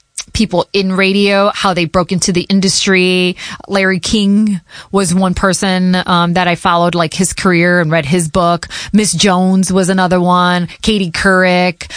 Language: English